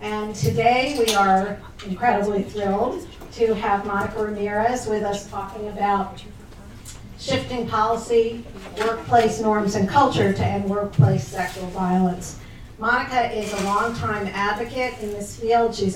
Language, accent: English, American